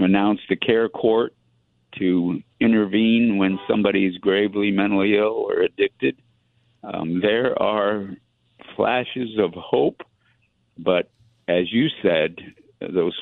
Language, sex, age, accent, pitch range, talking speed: English, male, 50-69, American, 90-105 Hz, 115 wpm